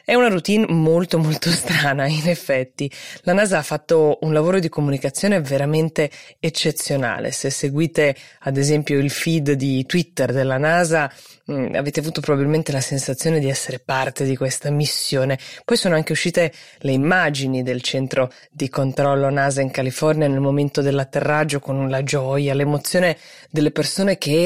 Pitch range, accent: 135-170 Hz, native